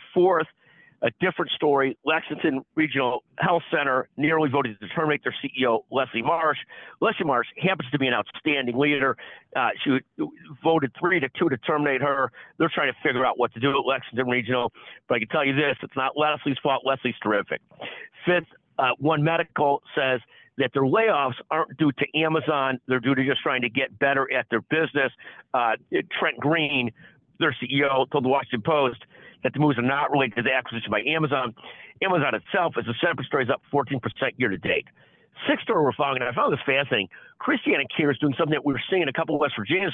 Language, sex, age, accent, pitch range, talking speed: English, male, 50-69, American, 130-155 Hz, 200 wpm